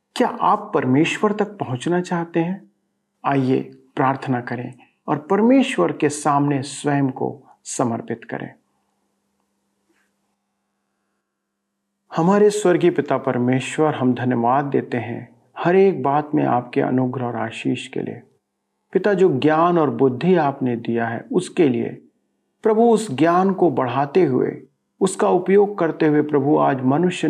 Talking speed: 130 wpm